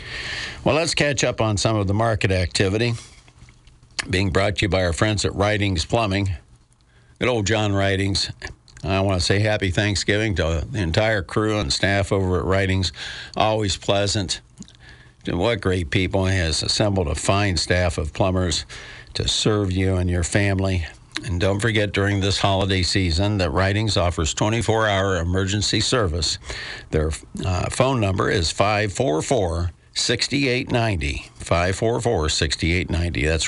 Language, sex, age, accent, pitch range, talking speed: English, male, 60-79, American, 90-110 Hz, 140 wpm